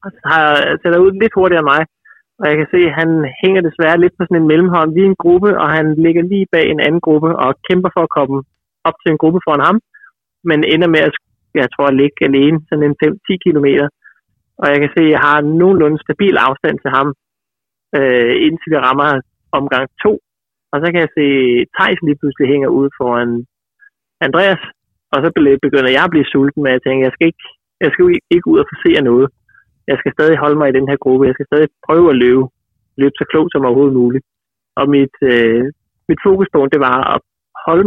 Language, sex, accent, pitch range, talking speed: Danish, male, native, 130-165 Hz, 215 wpm